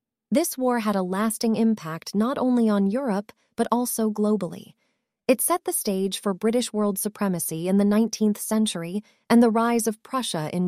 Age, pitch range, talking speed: 30-49, 195-245 Hz, 175 wpm